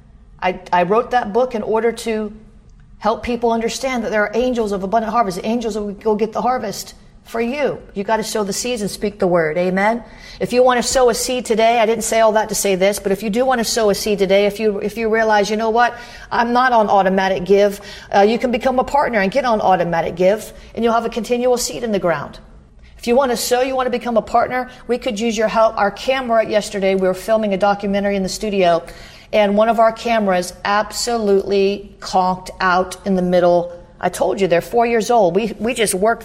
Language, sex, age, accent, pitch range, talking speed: English, female, 40-59, American, 190-230 Hz, 240 wpm